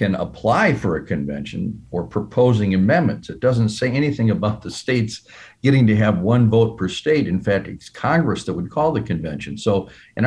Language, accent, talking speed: English, American, 195 wpm